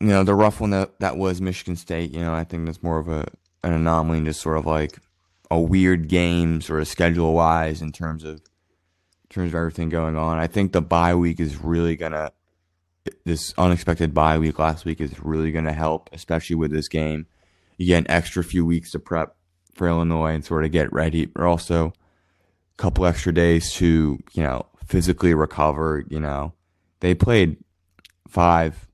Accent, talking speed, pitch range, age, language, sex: American, 195 wpm, 80-85 Hz, 20-39, English, male